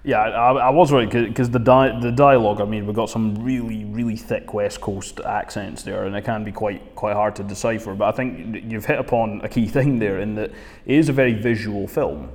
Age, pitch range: 20-39, 105-120 Hz